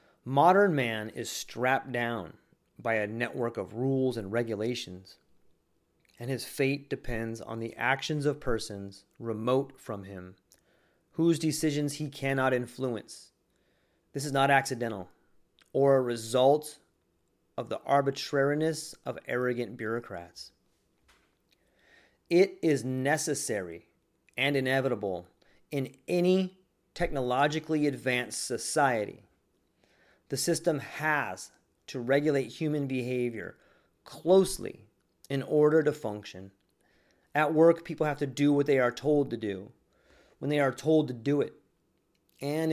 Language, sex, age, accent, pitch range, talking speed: English, male, 30-49, American, 115-145 Hz, 120 wpm